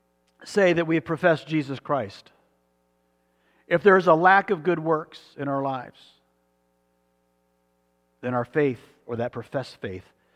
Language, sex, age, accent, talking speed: English, male, 50-69, American, 145 wpm